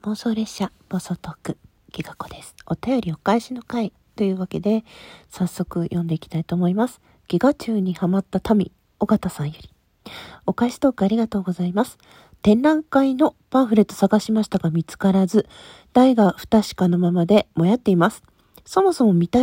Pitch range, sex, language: 180-235 Hz, female, Japanese